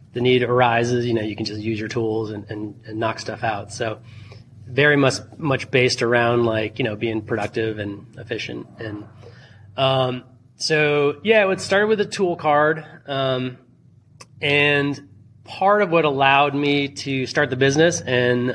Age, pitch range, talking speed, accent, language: 30-49, 115-145 Hz, 170 wpm, American, English